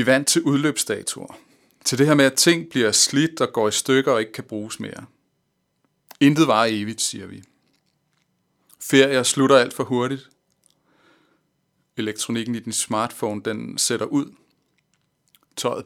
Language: Danish